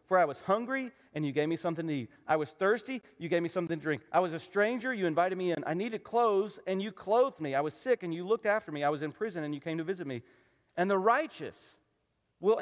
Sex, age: male, 40-59